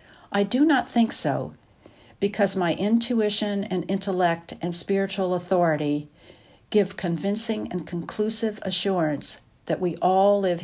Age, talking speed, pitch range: 60-79, 125 wpm, 150-195 Hz